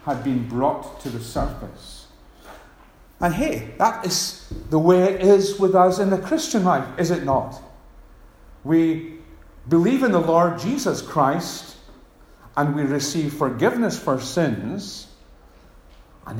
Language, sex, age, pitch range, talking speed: English, male, 50-69, 110-175 Hz, 135 wpm